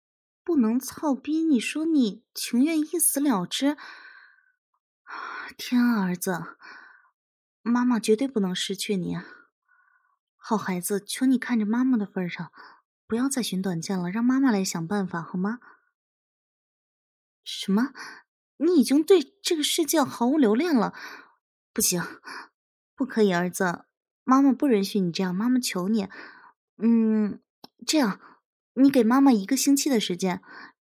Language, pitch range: English, 200-310 Hz